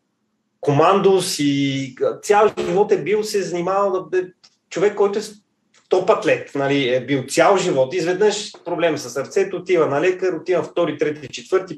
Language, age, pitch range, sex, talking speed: Bulgarian, 30-49, 135-170 Hz, male, 155 wpm